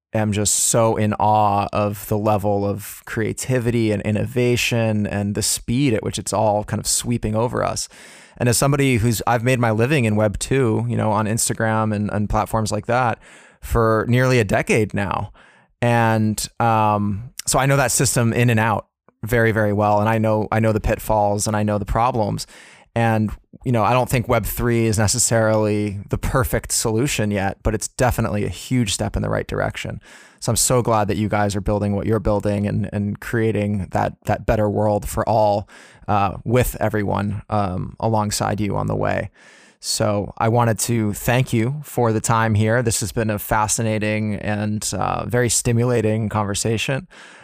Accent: American